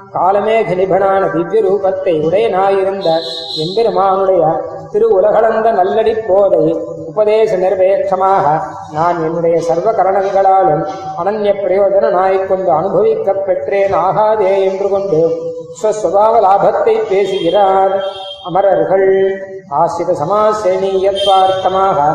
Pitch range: 185-200 Hz